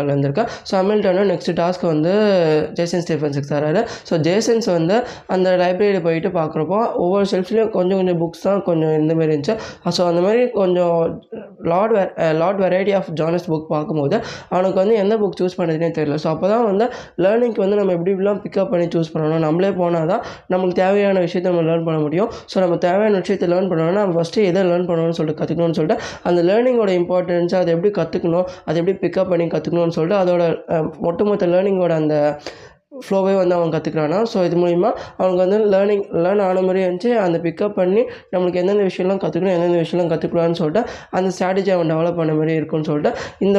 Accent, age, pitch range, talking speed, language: native, 20-39, 165-200 Hz, 60 wpm, Tamil